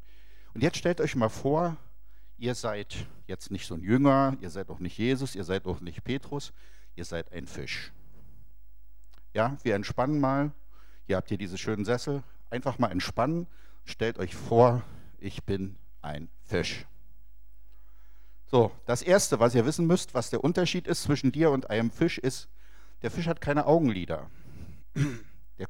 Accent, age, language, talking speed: German, 60-79, German, 165 wpm